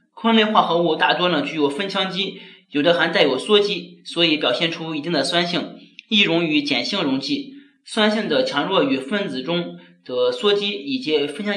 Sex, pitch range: male, 150-215 Hz